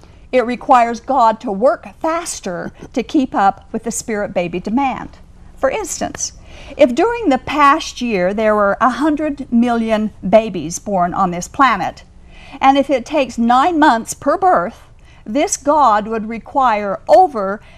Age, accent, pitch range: 50-69, American, 210-275 Hz